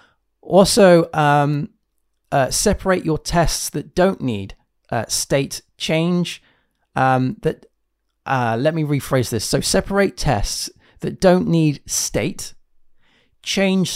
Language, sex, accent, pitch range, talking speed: English, male, British, 125-165 Hz, 115 wpm